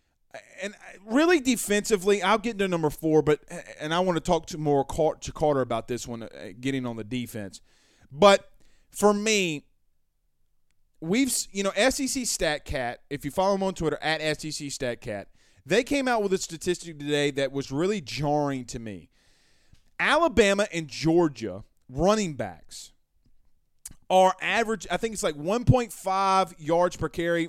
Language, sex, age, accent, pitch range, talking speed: English, male, 30-49, American, 140-190 Hz, 155 wpm